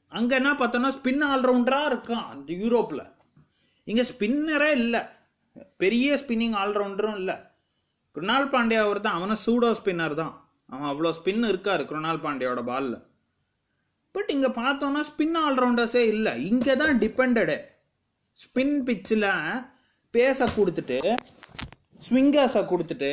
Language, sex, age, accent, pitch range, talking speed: English, male, 30-49, Indian, 180-255 Hz, 75 wpm